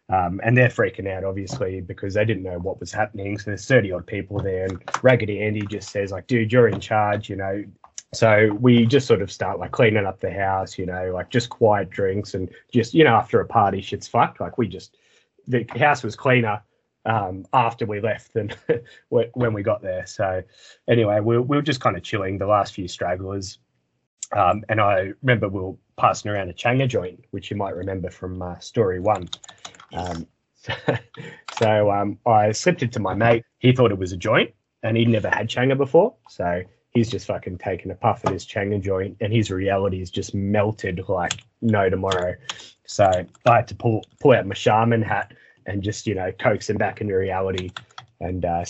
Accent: Australian